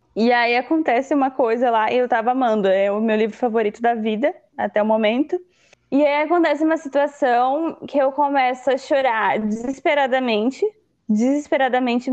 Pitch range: 240-305 Hz